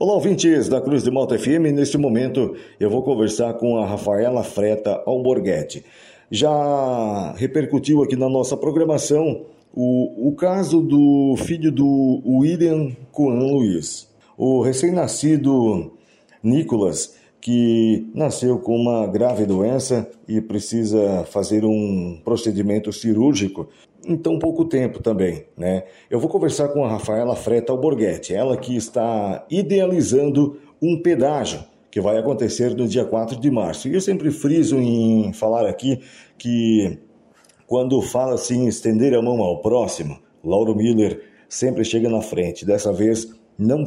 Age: 50-69